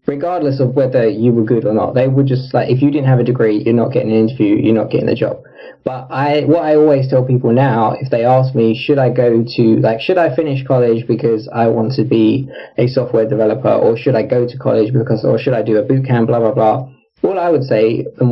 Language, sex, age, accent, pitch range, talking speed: English, male, 20-39, British, 115-140 Hz, 255 wpm